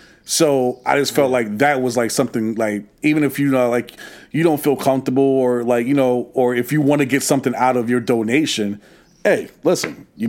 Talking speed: 210 wpm